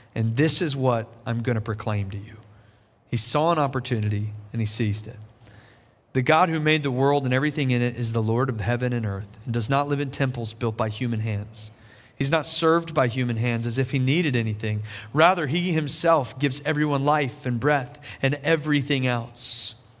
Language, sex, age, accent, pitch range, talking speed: English, male, 40-59, American, 115-165 Hz, 200 wpm